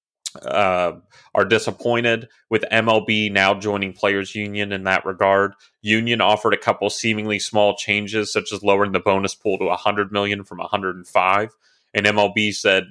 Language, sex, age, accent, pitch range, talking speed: English, male, 30-49, American, 100-115 Hz, 155 wpm